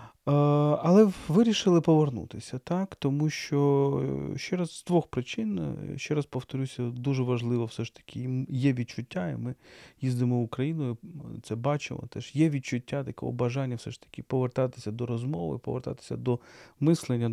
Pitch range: 115-145 Hz